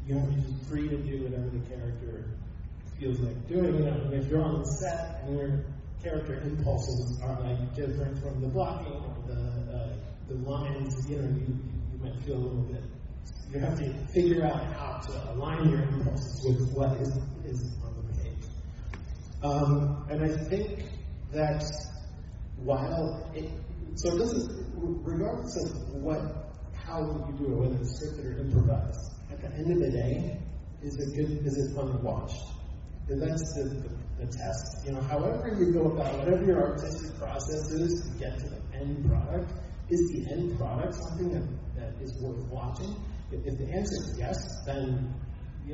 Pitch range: 110-145 Hz